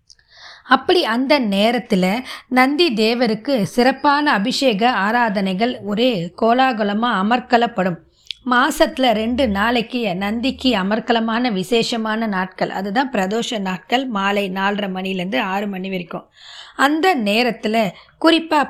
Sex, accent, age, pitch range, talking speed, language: female, native, 20-39, 205-255 Hz, 95 wpm, Tamil